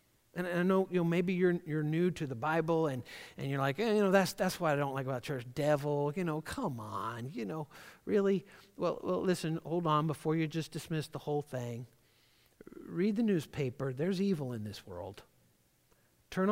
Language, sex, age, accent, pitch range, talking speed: English, male, 50-69, American, 125-165 Hz, 205 wpm